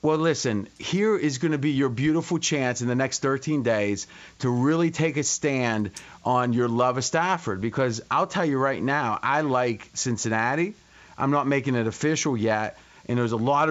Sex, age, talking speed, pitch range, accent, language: male, 30-49, 195 wpm, 115-155 Hz, American, English